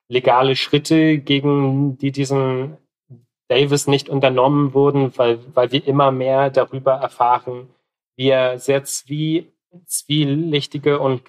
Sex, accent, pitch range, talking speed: male, German, 120-140 Hz, 110 wpm